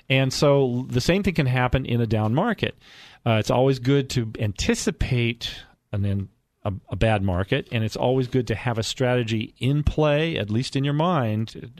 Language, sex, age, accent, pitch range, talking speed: English, male, 40-59, American, 105-135 Hz, 195 wpm